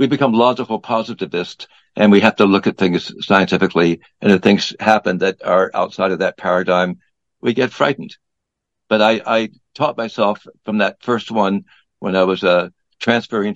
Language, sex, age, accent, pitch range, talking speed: English, male, 60-79, American, 90-115 Hz, 175 wpm